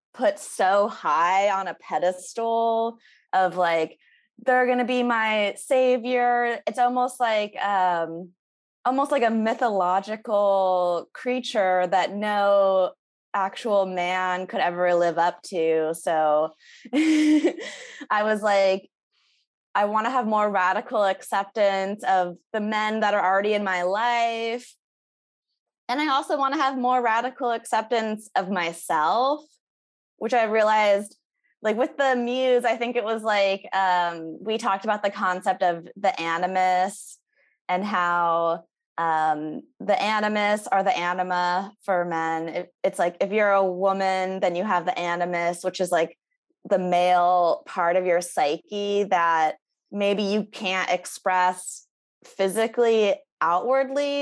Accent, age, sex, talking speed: American, 20-39, female, 135 wpm